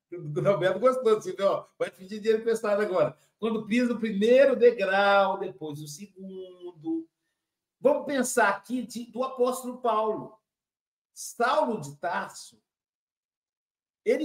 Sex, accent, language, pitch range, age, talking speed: male, Brazilian, Portuguese, 185-255 Hz, 60-79, 120 wpm